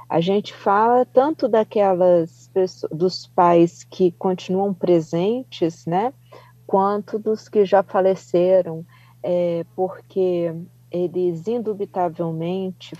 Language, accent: Portuguese, Brazilian